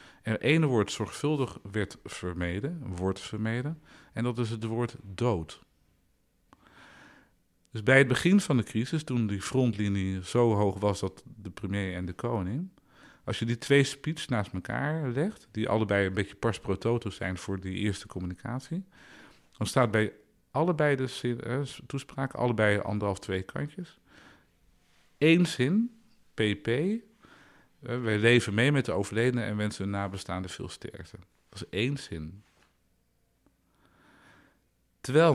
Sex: male